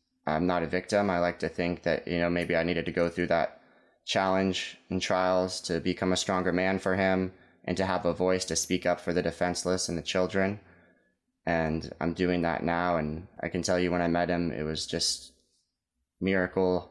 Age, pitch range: 20-39, 85-95 Hz